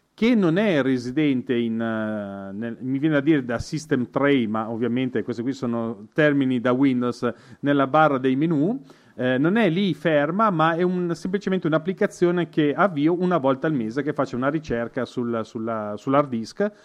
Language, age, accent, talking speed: Italian, 40-59, native, 175 wpm